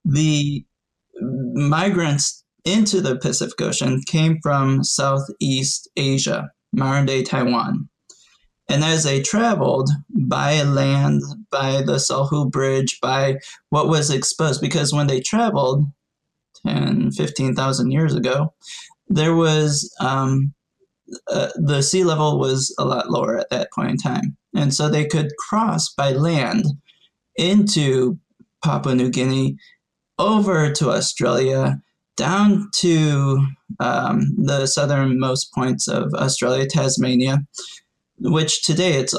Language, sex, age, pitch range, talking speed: English, male, 20-39, 135-175 Hz, 115 wpm